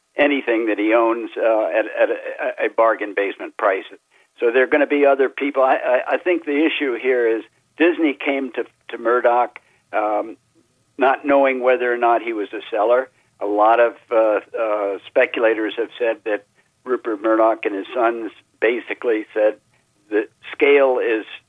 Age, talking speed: 60-79, 175 wpm